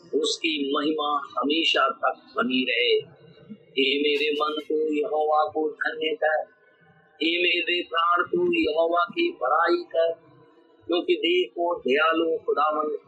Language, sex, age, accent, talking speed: Hindi, male, 50-69, native, 85 wpm